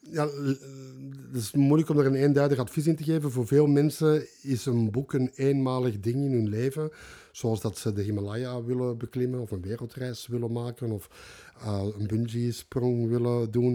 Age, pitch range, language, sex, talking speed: 50-69, 110-130 Hz, Dutch, male, 185 wpm